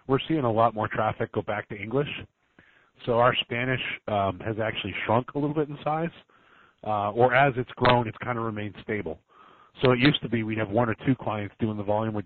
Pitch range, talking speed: 105-130 Hz, 230 wpm